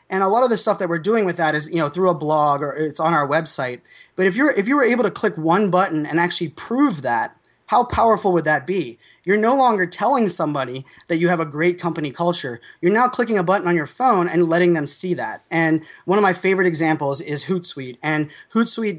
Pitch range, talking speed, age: 155-190 Hz, 245 wpm, 20-39